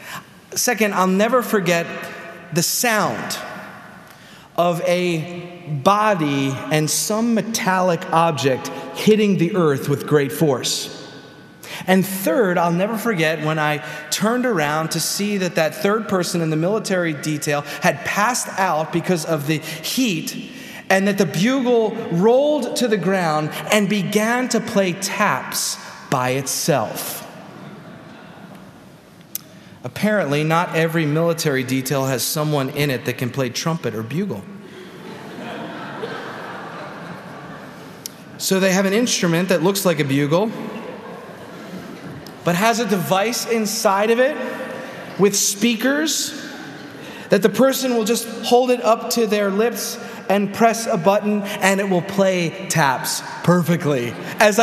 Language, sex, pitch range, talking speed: English, male, 160-220 Hz, 125 wpm